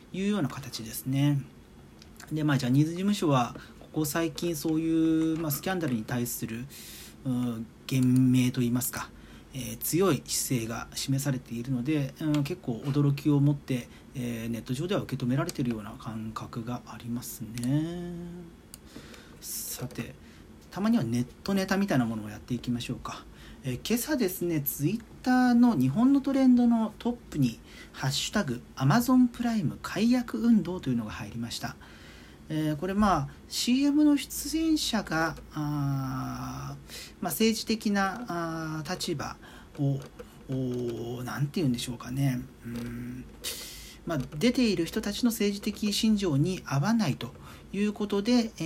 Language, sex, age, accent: Japanese, male, 40-59, native